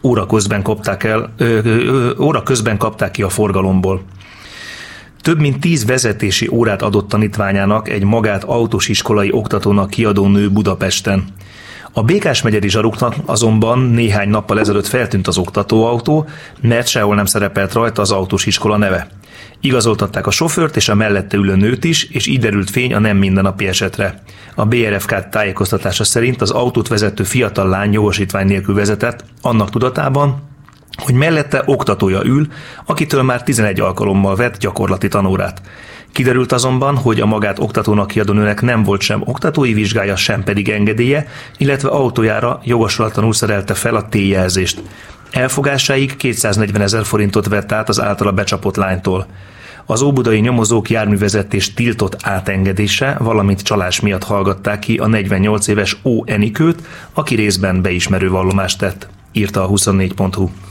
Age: 30-49